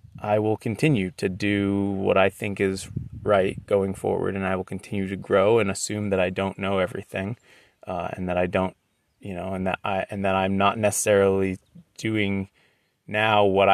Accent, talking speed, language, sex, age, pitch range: American, 190 wpm, English, male, 30-49, 95-110 Hz